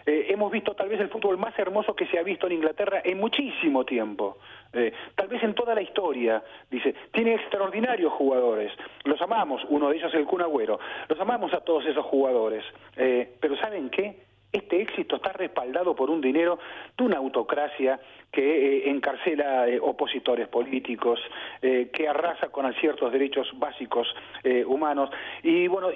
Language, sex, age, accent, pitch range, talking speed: Spanish, male, 40-59, Argentinian, 130-190 Hz, 175 wpm